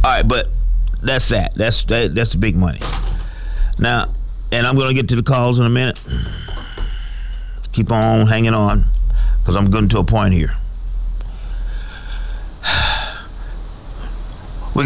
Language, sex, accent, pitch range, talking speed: English, male, American, 90-115 Hz, 140 wpm